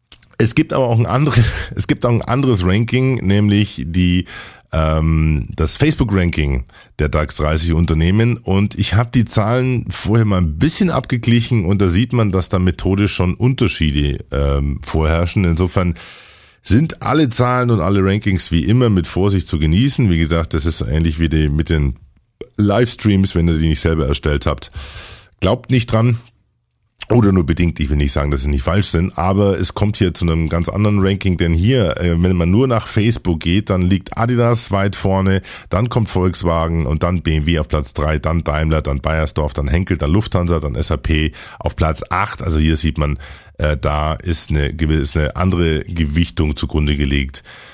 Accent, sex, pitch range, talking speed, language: German, male, 75-100 Hz, 175 wpm, German